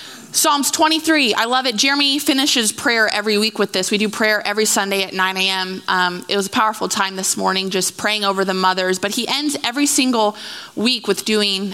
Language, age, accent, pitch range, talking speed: English, 30-49, American, 210-310 Hz, 205 wpm